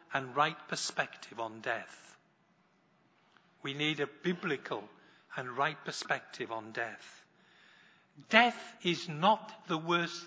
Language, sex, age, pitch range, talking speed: English, male, 60-79, 140-170 Hz, 110 wpm